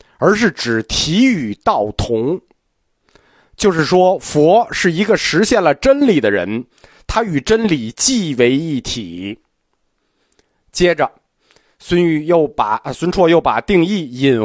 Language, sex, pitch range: Chinese, male, 125-175 Hz